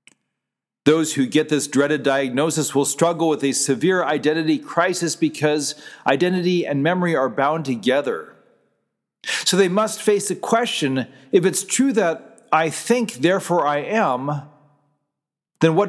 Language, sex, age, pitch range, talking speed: English, male, 40-59, 150-205 Hz, 140 wpm